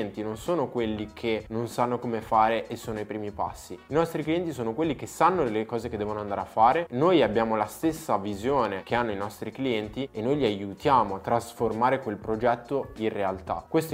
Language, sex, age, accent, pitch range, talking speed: Italian, male, 20-39, native, 105-135 Hz, 205 wpm